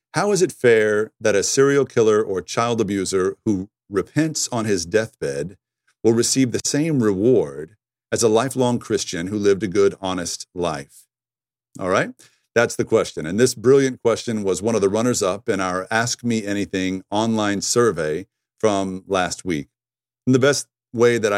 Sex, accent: male, American